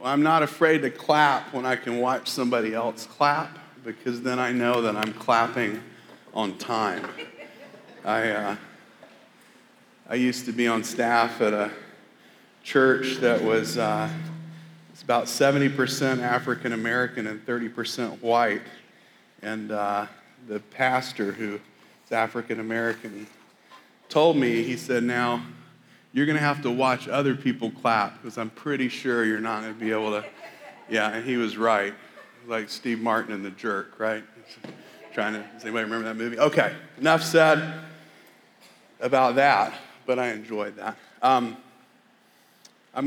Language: English